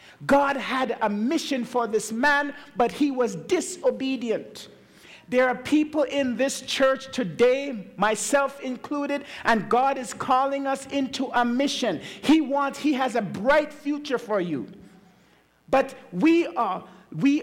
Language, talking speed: English, 140 wpm